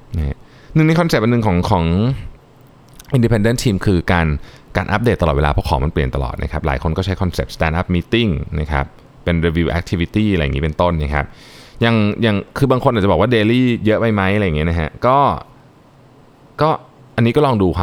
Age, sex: 20-39, male